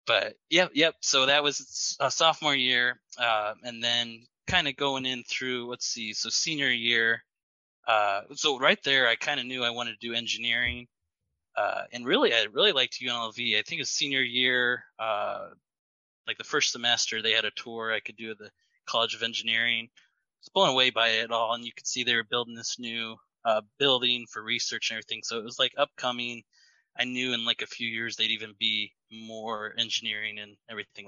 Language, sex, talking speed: English, male, 205 wpm